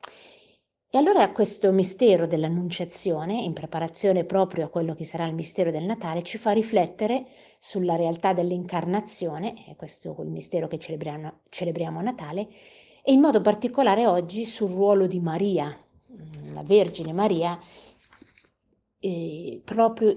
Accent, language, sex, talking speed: native, Italian, female, 130 wpm